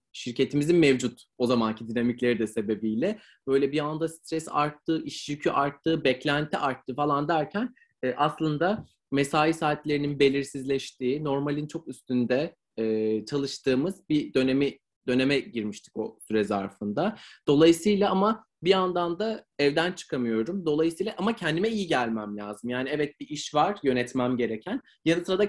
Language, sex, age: Turkish, male, 30-49